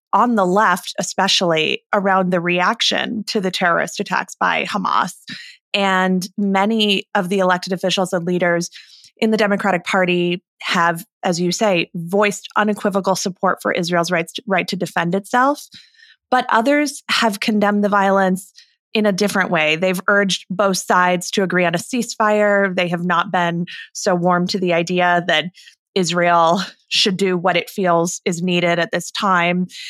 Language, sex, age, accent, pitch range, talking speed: English, female, 20-39, American, 180-210 Hz, 160 wpm